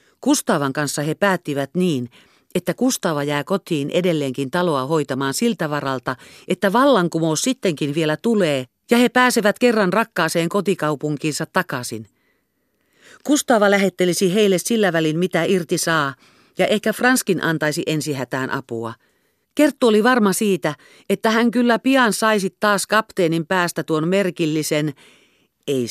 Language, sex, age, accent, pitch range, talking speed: Finnish, female, 50-69, native, 140-205 Hz, 125 wpm